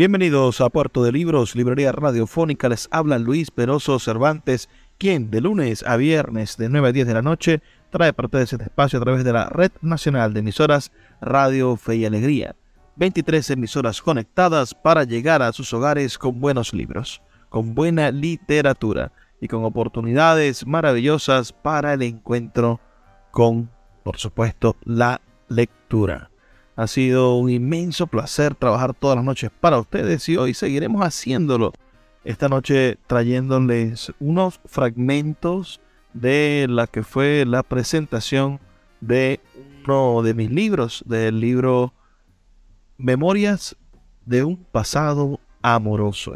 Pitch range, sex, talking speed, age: 115-145 Hz, male, 135 wpm, 30-49